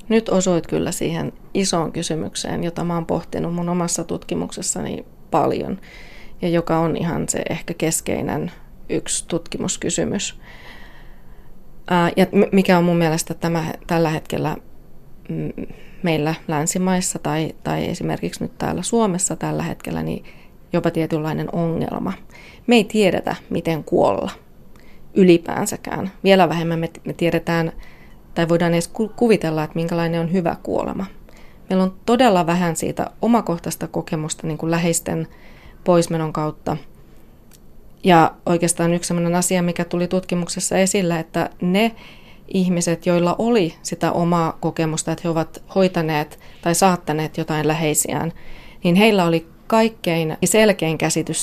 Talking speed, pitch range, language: 120 wpm, 160-185 Hz, Finnish